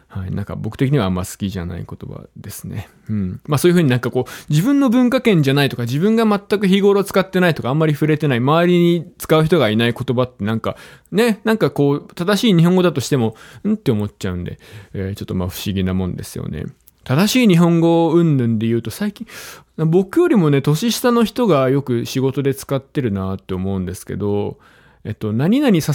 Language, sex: Japanese, male